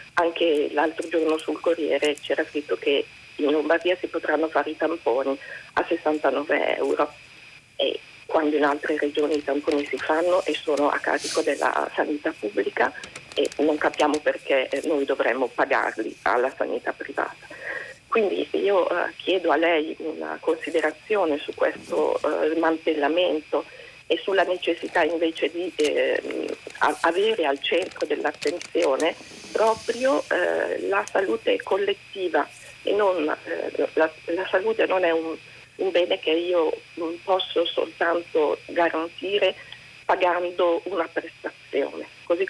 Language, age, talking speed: Italian, 40-59, 125 wpm